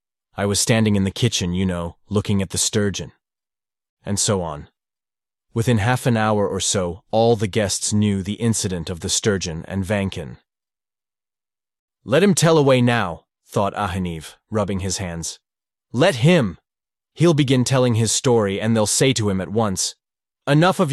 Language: English